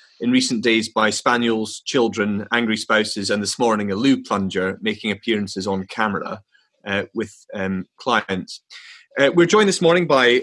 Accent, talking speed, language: British, 160 wpm, English